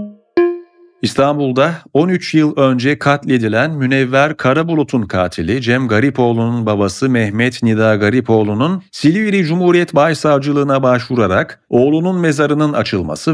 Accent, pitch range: native, 110-145 Hz